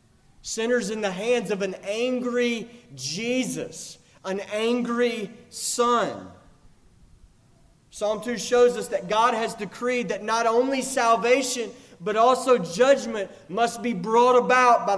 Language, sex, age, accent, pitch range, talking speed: English, male, 30-49, American, 205-260 Hz, 125 wpm